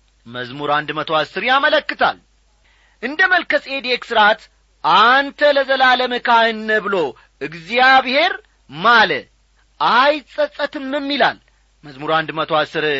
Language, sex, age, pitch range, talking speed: Amharic, male, 40-59, 200-270 Hz, 80 wpm